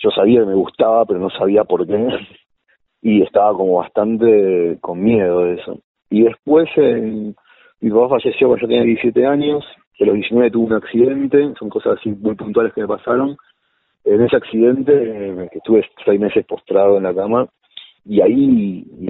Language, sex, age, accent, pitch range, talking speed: Spanish, male, 40-59, Argentinian, 95-125 Hz, 180 wpm